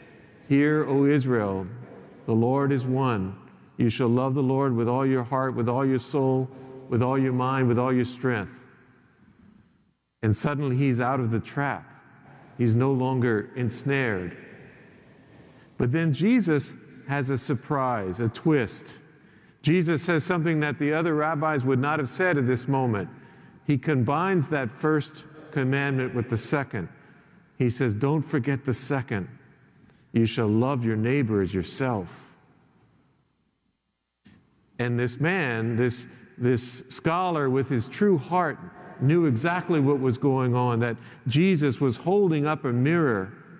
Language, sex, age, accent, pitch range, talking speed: English, male, 50-69, American, 120-150 Hz, 145 wpm